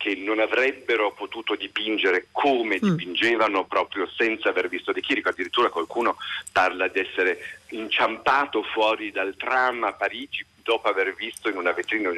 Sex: male